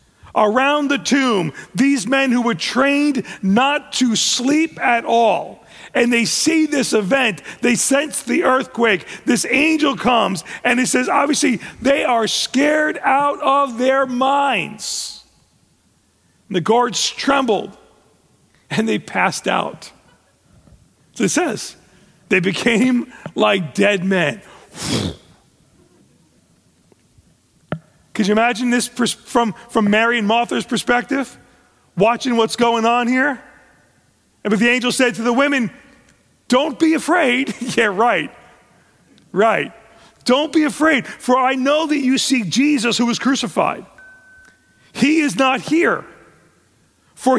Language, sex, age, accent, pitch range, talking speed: English, male, 40-59, American, 225-275 Hz, 125 wpm